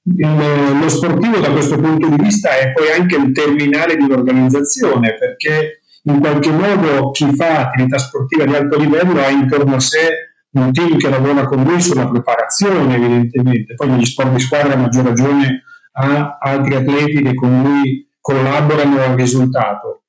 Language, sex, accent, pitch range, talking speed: Italian, male, native, 130-155 Hz, 165 wpm